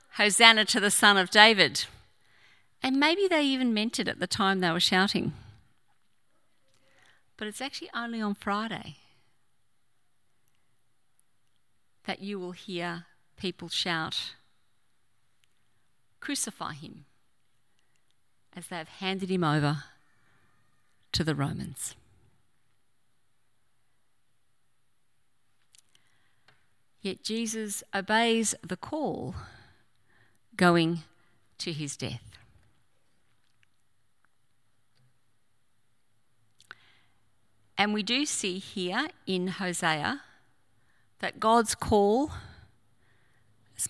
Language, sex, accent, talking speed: English, female, Australian, 85 wpm